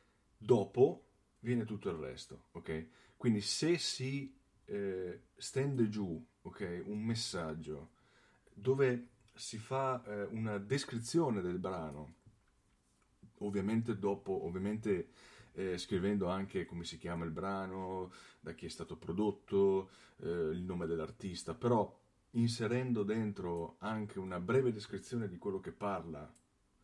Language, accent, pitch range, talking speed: Italian, native, 95-120 Hz, 120 wpm